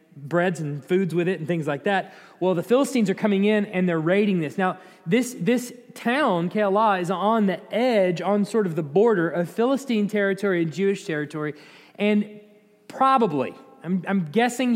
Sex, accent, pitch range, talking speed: male, American, 175-215 Hz, 180 wpm